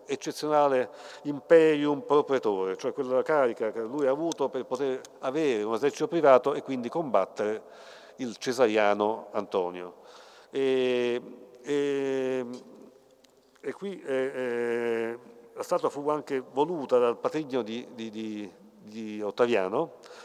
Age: 50-69